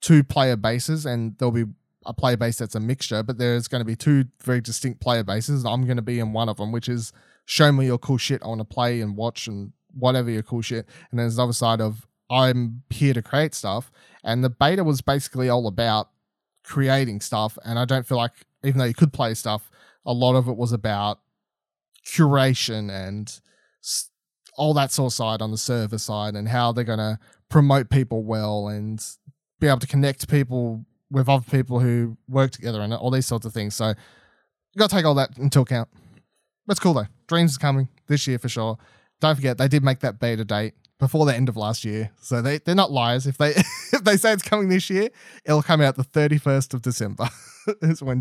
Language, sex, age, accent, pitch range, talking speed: English, male, 20-39, Australian, 115-140 Hz, 220 wpm